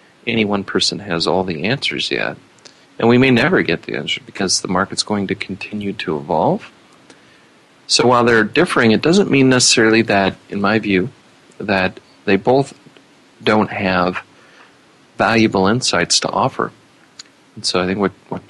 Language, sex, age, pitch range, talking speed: English, male, 40-59, 90-110 Hz, 160 wpm